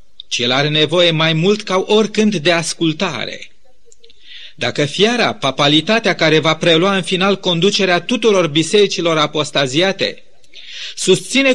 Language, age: Romanian, 40-59